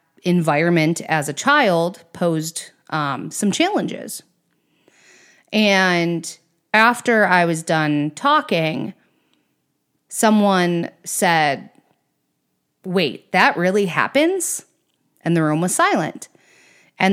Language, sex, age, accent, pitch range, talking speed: English, female, 30-49, American, 155-195 Hz, 90 wpm